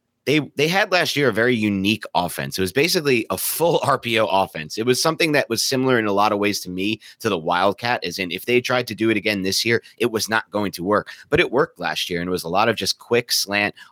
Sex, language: male, English